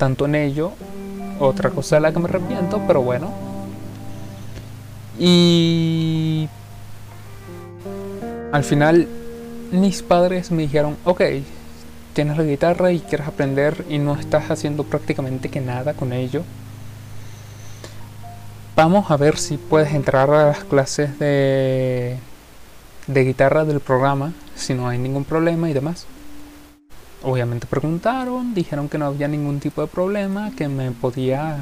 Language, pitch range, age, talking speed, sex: Spanish, 110-165 Hz, 20-39, 130 wpm, male